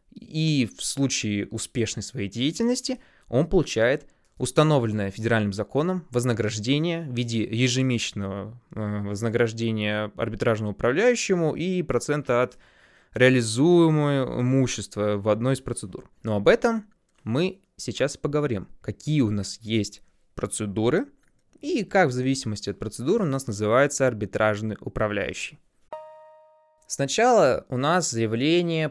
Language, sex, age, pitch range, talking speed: Russian, male, 20-39, 110-155 Hz, 110 wpm